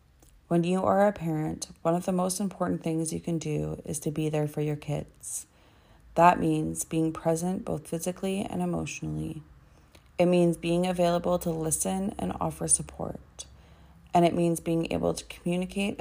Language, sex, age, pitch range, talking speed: English, female, 30-49, 135-175 Hz, 170 wpm